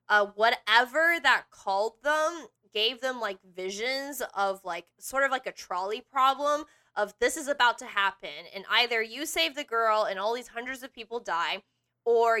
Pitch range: 195-245 Hz